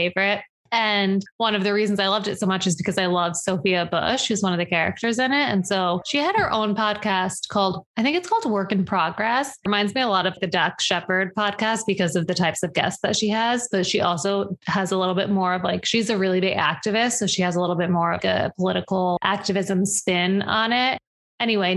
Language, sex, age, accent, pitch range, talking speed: English, female, 20-39, American, 185-220 Hz, 240 wpm